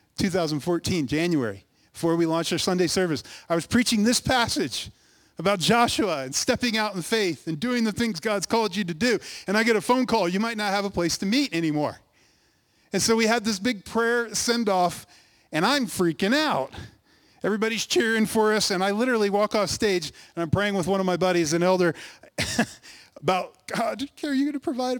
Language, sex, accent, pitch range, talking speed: English, male, American, 140-225 Hz, 200 wpm